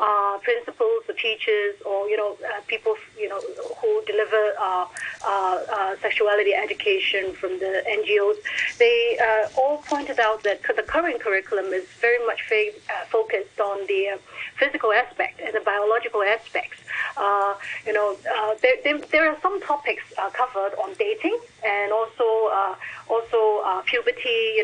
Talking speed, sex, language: 160 wpm, female, English